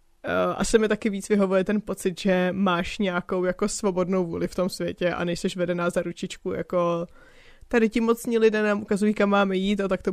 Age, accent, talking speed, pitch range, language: 20-39, native, 200 wpm, 185-220 Hz, Czech